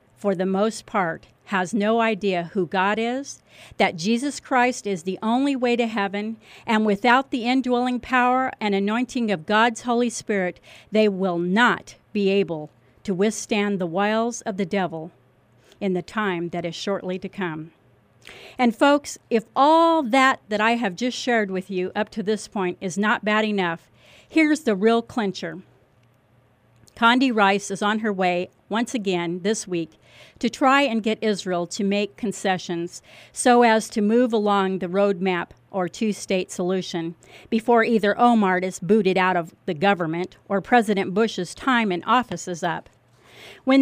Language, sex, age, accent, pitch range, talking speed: English, female, 40-59, American, 185-240 Hz, 165 wpm